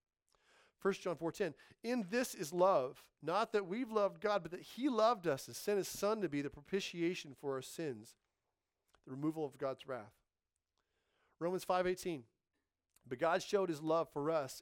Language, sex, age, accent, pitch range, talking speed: English, male, 40-59, American, 125-170 Hz, 170 wpm